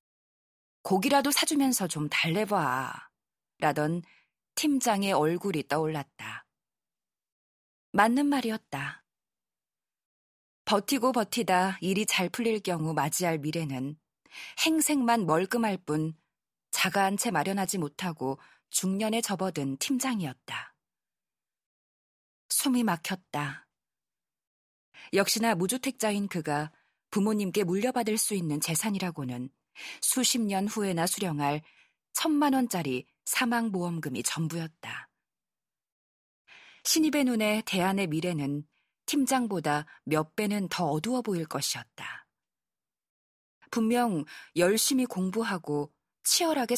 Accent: native